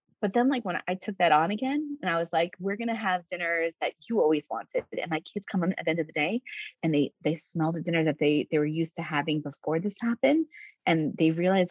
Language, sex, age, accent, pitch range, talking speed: English, female, 30-49, American, 165-240 Hz, 260 wpm